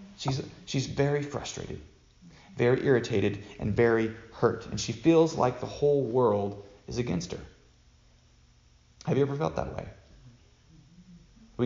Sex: male